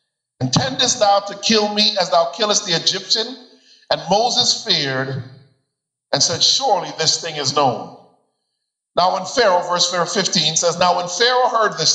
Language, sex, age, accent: English, male, 50-69, American